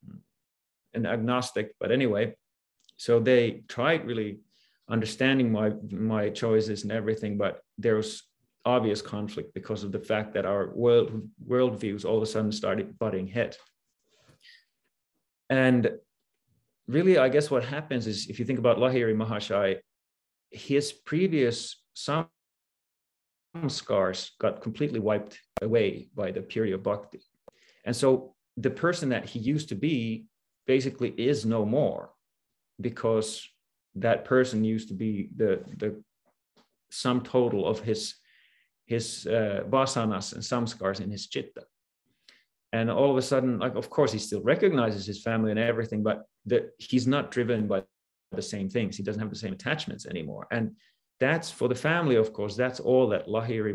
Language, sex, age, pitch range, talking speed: English, male, 30-49, 105-125 Hz, 150 wpm